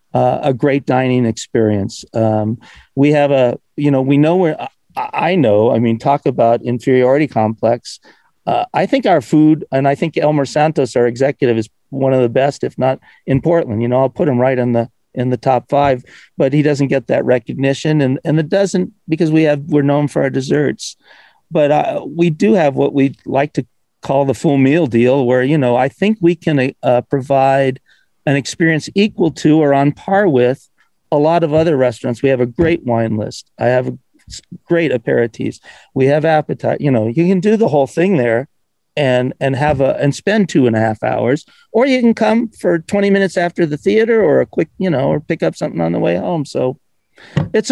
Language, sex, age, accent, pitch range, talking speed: English, male, 50-69, American, 125-155 Hz, 210 wpm